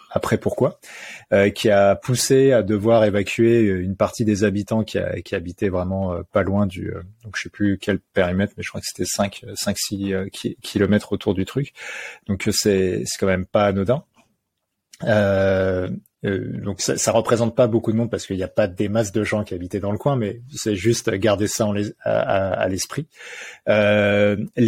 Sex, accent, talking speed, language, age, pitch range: male, French, 190 wpm, French, 30-49, 95-110 Hz